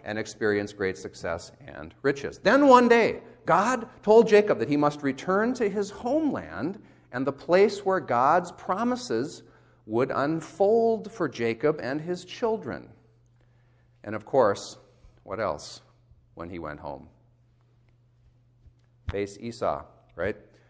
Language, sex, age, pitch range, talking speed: English, male, 40-59, 120-180 Hz, 130 wpm